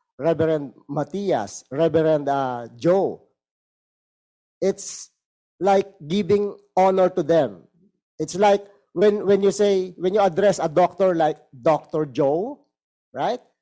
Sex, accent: male, Filipino